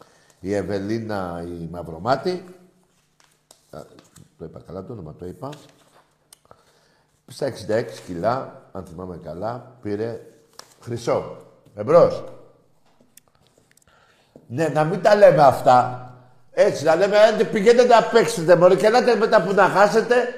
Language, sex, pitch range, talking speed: Greek, male, 130-215 Hz, 120 wpm